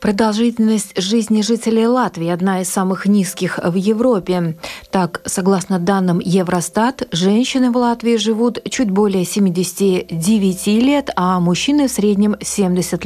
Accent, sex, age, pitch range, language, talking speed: native, female, 30-49, 185-230 Hz, Russian, 125 wpm